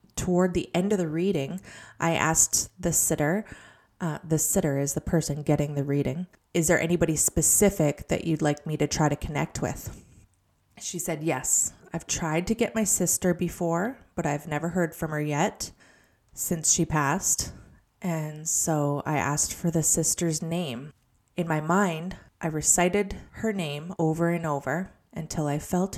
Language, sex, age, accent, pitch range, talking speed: English, female, 20-39, American, 150-185 Hz, 170 wpm